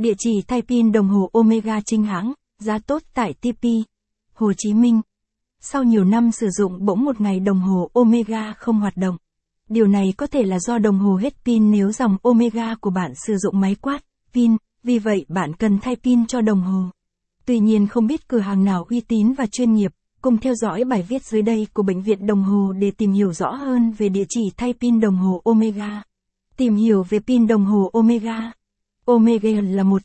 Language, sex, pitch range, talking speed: Vietnamese, female, 200-235 Hz, 210 wpm